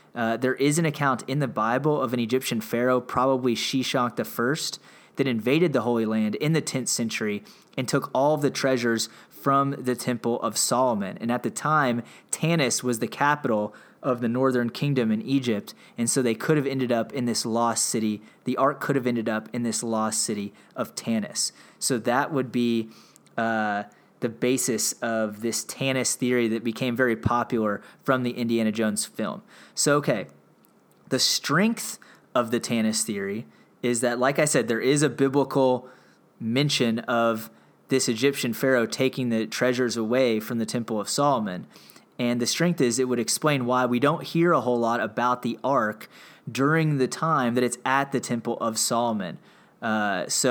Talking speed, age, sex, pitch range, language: 180 wpm, 20-39, male, 115-135 Hz, English